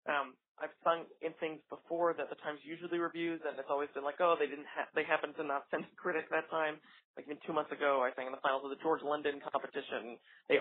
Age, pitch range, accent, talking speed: 20-39, 145-180 Hz, American, 260 wpm